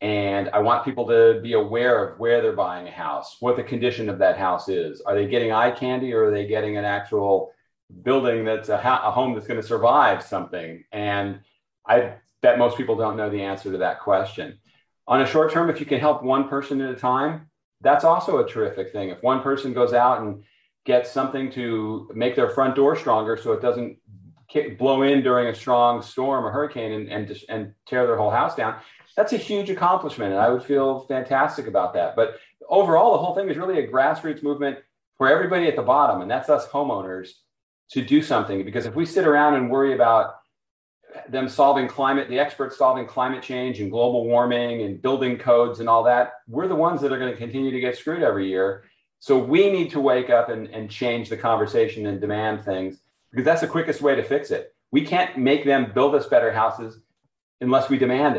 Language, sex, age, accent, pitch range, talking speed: English, male, 40-59, American, 110-140 Hz, 215 wpm